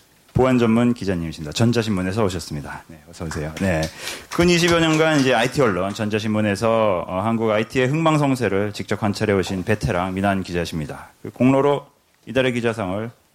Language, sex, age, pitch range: Korean, male, 30-49, 95-130 Hz